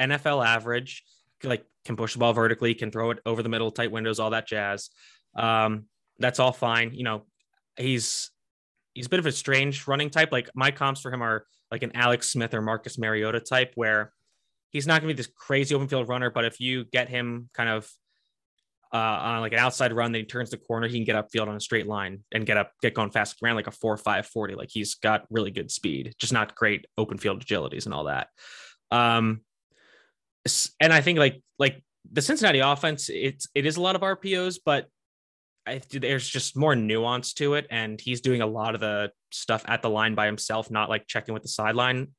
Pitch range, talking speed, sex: 110-130 Hz, 220 wpm, male